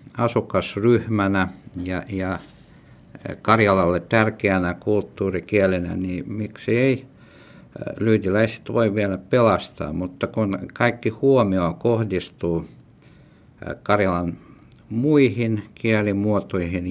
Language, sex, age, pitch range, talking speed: Finnish, male, 60-79, 90-110 Hz, 70 wpm